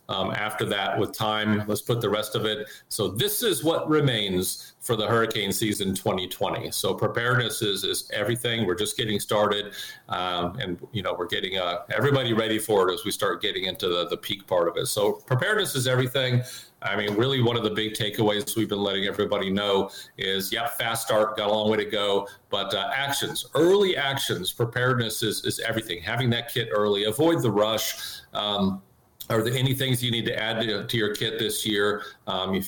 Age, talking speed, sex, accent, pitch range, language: 50-69, 205 wpm, male, American, 100-120 Hz, English